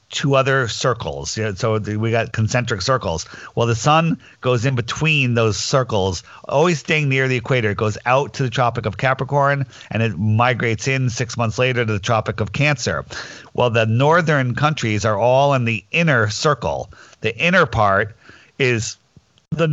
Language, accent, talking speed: English, American, 170 wpm